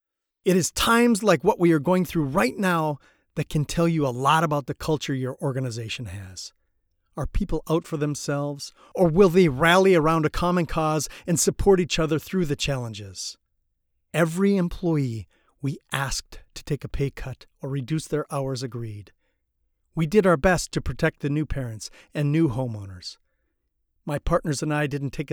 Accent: American